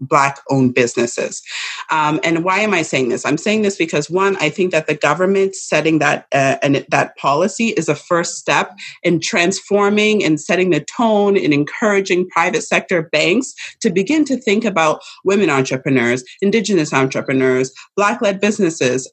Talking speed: 160 wpm